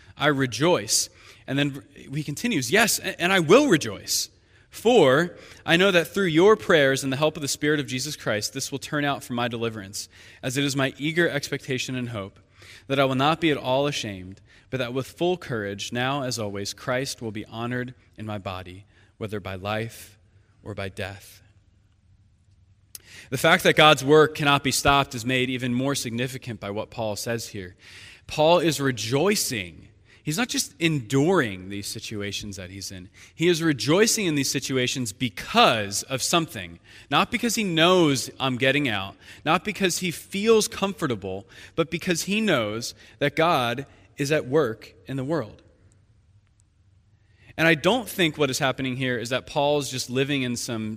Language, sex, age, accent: English, male, 20-39, American